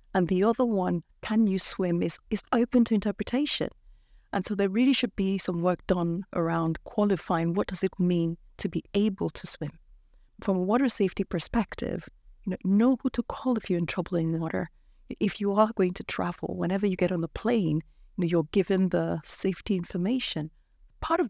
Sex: female